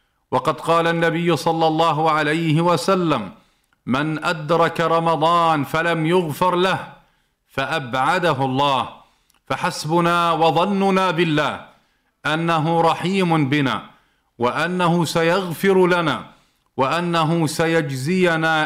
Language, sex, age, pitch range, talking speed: Arabic, male, 50-69, 150-170 Hz, 85 wpm